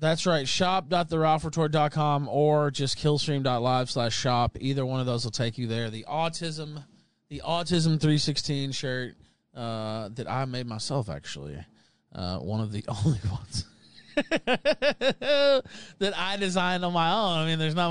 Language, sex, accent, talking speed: English, male, American, 160 wpm